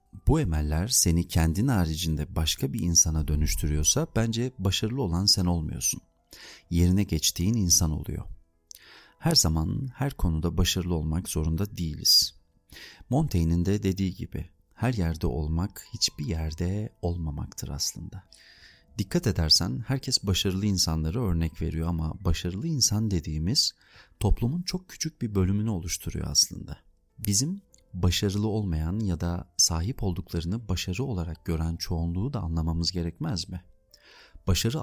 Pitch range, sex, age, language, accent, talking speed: 80-100 Hz, male, 40-59, Turkish, native, 120 wpm